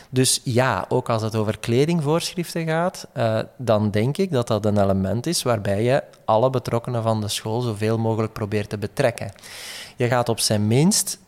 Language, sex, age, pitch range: Dutch, male, 20-39, 110-135 Hz